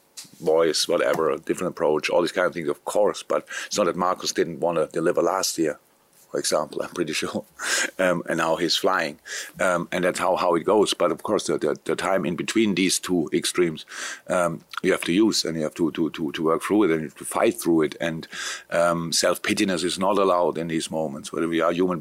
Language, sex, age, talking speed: English, male, 50-69, 240 wpm